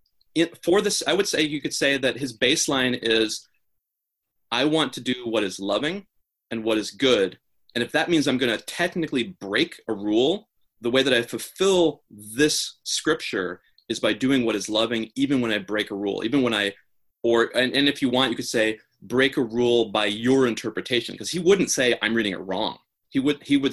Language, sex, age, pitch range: English, male, 30-49, 110-135 Hz